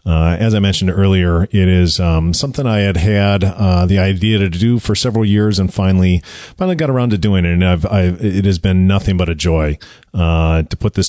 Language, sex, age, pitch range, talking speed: English, male, 40-59, 85-105 Hz, 225 wpm